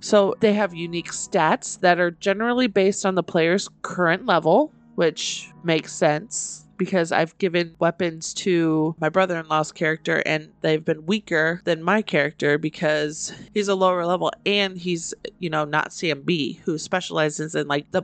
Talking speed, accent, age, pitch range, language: 160 wpm, American, 30-49, 160-205 Hz, English